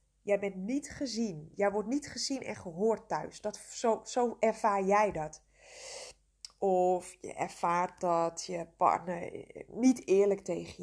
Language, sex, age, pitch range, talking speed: Dutch, female, 20-39, 175-250 Hz, 140 wpm